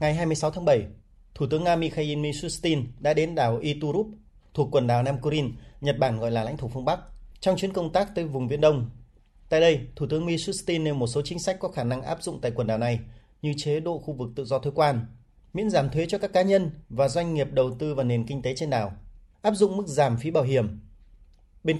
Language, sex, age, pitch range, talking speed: Vietnamese, male, 30-49, 125-165 Hz, 240 wpm